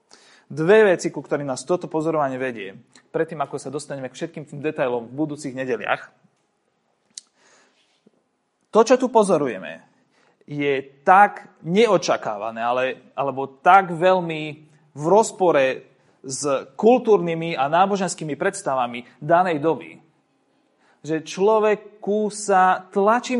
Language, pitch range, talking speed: Slovak, 150-205 Hz, 110 wpm